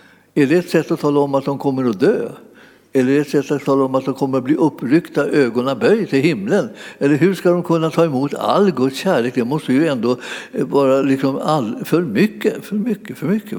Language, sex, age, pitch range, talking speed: Swedish, male, 60-79, 135-180 Hz, 235 wpm